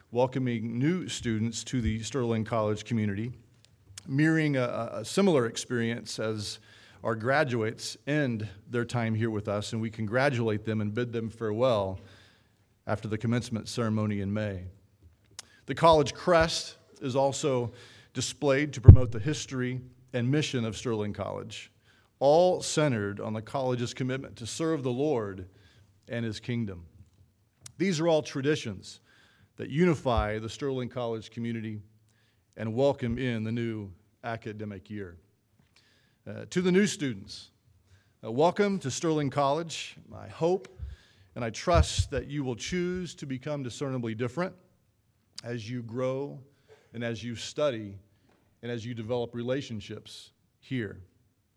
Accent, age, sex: American, 40-59, male